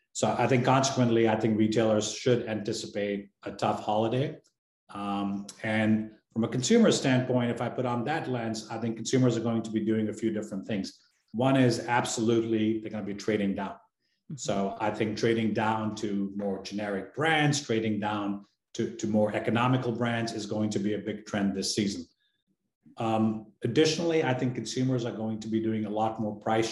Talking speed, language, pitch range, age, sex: 185 wpm, English, 110-125 Hz, 30-49, male